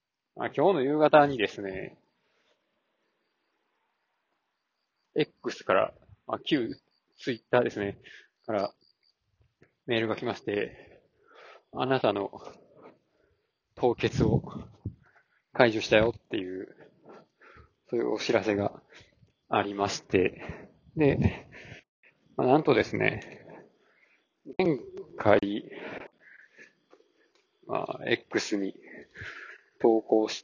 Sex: male